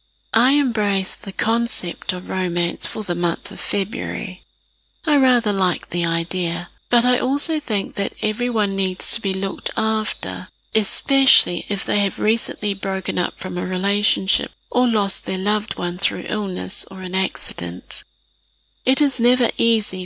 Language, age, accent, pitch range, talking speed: English, 40-59, British, 180-225 Hz, 155 wpm